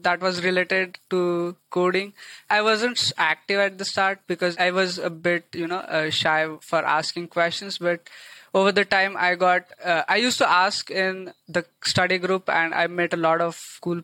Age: 20-39